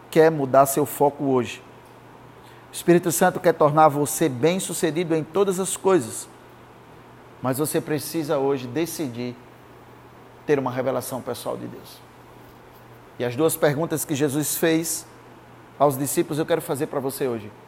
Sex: male